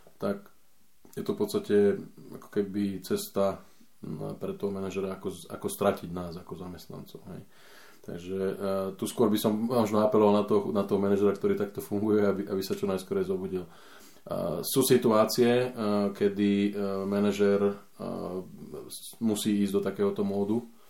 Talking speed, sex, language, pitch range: 150 wpm, male, Slovak, 95-110 Hz